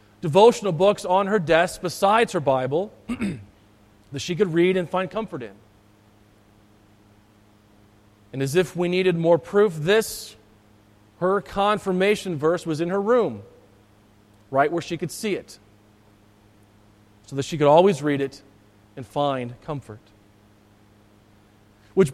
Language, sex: English, male